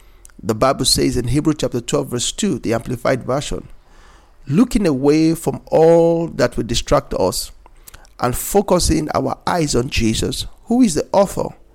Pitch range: 110-160 Hz